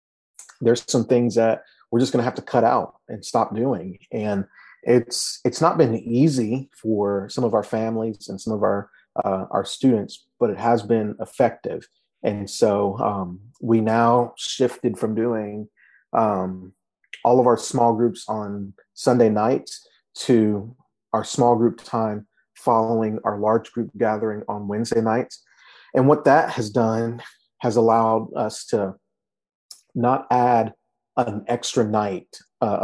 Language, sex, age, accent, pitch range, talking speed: English, male, 30-49, American, 105-120 Hz, 150 wpm